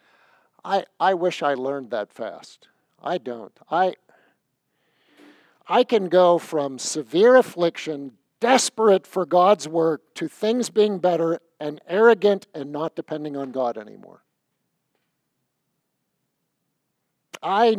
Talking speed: 110 wpm